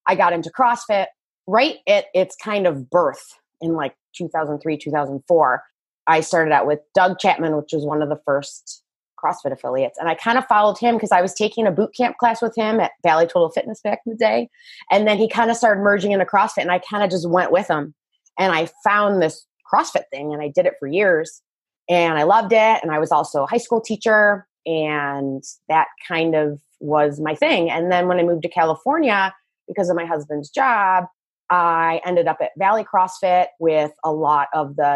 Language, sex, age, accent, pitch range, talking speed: English, female, 20-39, American, 160-210 Hz, 210 wpm